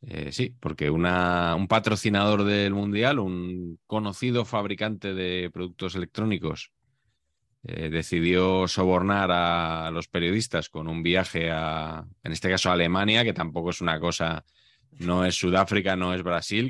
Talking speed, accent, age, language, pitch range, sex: 140 wpm, Spanish, 20-39, Spanish, 85-105 Hz, male